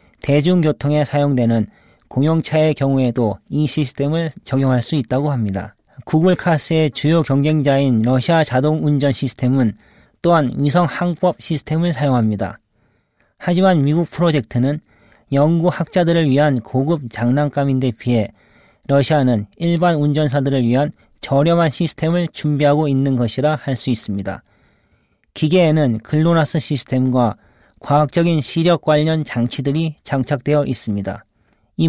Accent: native